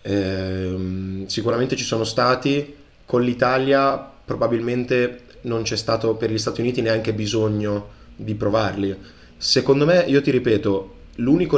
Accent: native